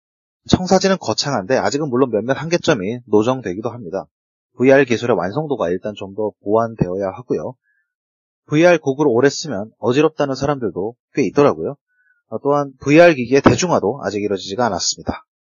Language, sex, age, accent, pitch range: Korean, male, 30-49, native, 115-150 Hz